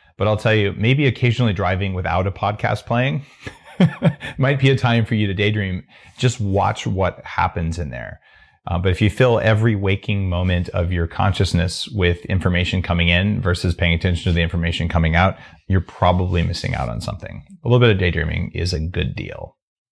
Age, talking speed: 30-49, 190 wpm